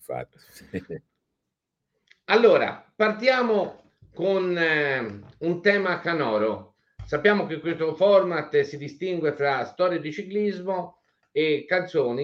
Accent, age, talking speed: native, 50-69, 95 wpm